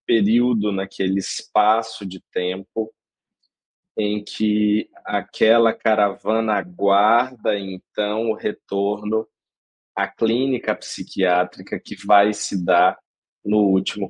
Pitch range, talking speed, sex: 95-115 Hz, 95 wpm, male